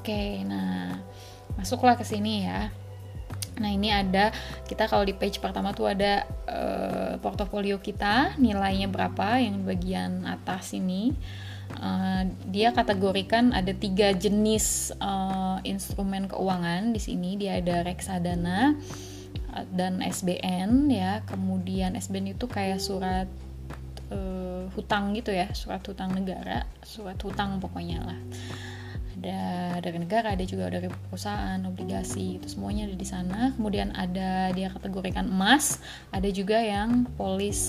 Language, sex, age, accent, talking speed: Indonesian, female, 20-39, native, 130 wpm